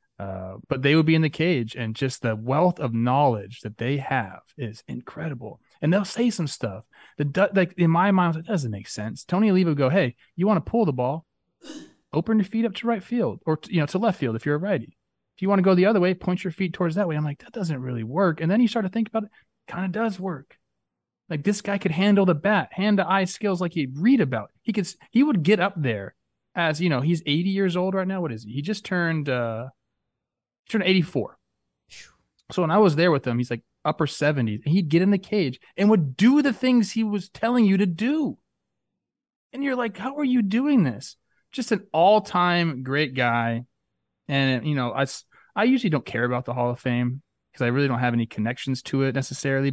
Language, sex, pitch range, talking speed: English, male, 125-195 Hz, 240 wpm